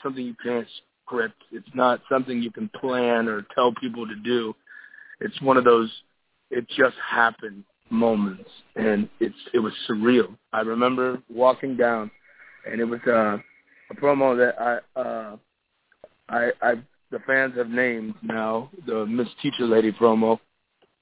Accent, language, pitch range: American, English, 110-125 Hz